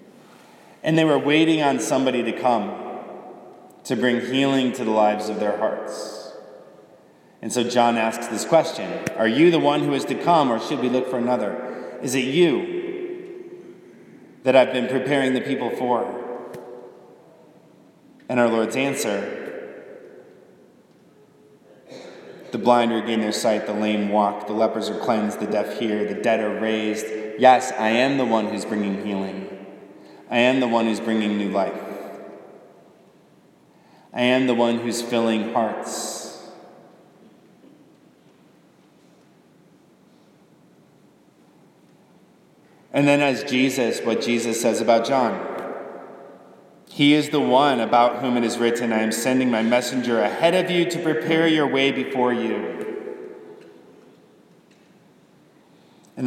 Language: English